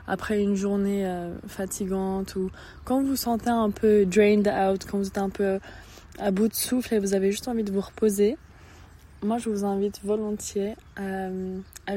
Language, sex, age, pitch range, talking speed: English, female, 20-39, 190-210 Hz, 185 wpm